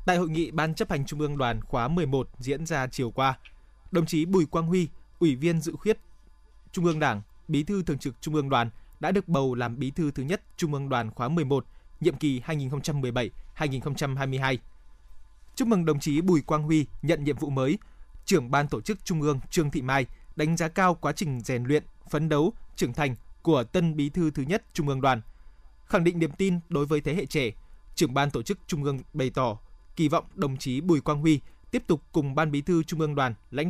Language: Vietnamese